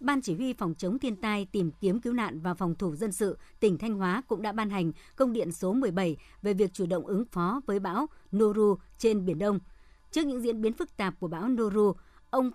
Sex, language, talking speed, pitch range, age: male, Vietnamese, 235 wpm, 190-235 Hz, 60-79